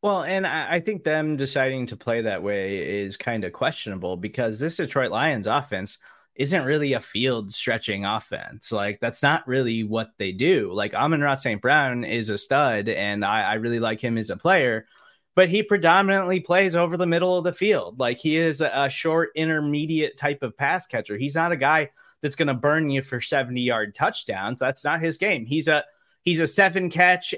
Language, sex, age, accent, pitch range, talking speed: English, male, 20-39, American, 130-180 Hz, 200 wpm